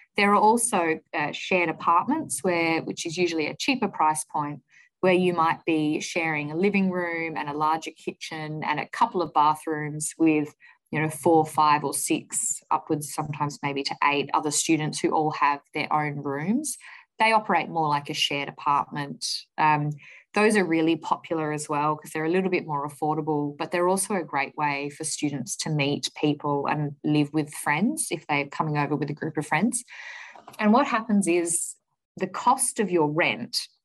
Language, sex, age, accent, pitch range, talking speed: English, female, 20-39, Australian, 150-185 Hz, 185 wpm